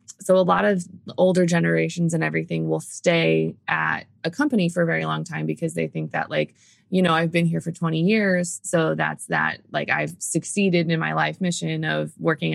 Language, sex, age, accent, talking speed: English, female, 20-39, American, 205 wpm